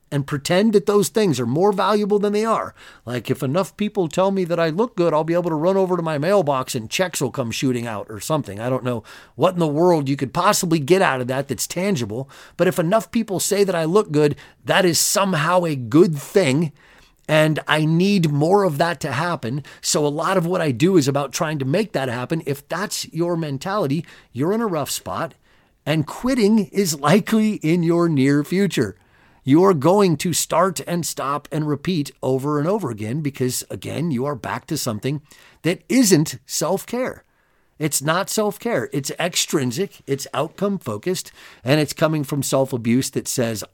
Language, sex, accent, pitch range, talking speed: English, male, American, 135-185 Hz, 200 wpm